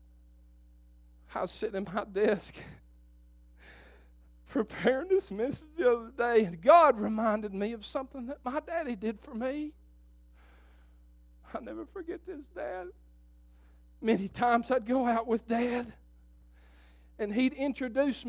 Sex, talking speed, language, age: male, 130 wpm, English, 40-59